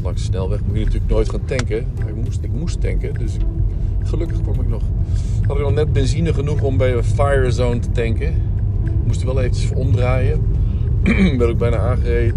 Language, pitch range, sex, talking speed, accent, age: English, 95-110 Hz, male, 205 wpm, Dutch, 50-69